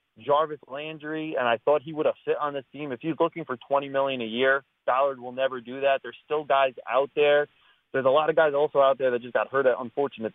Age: 30-49